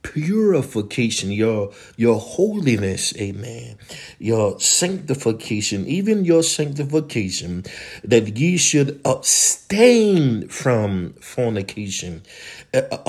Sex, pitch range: male, 90-115 Hz